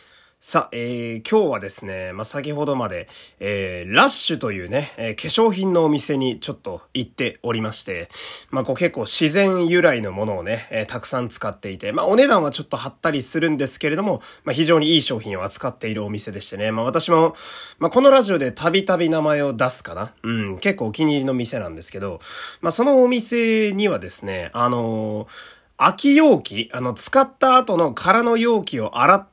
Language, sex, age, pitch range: Japanese, male, 30-49, 115-180 Hz